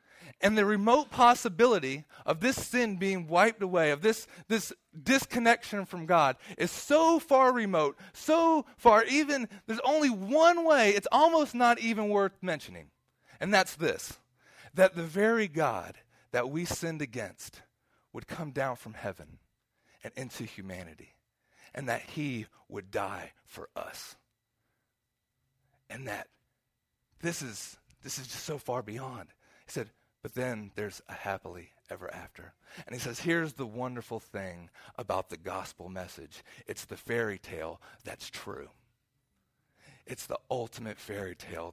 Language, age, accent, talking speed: English, 40-59, American, 145 wpm